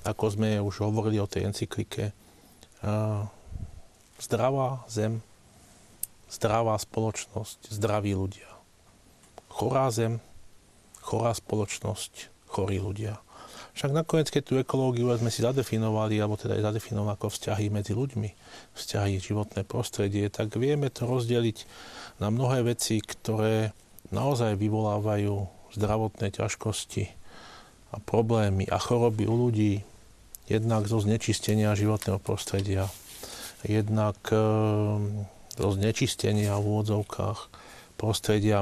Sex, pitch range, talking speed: male, 100-115 Hz, 105 wpm